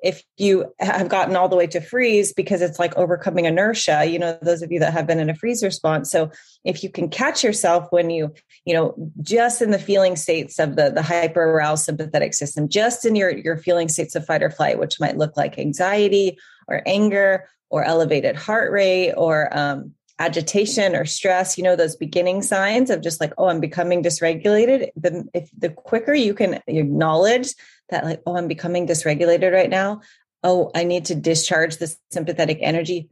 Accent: American